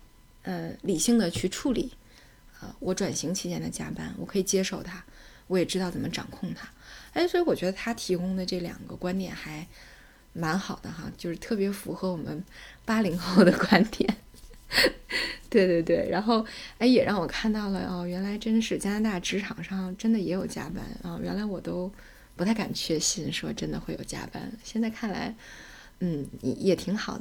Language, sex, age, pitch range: Chinese, female, 20-39, 180-220 Hz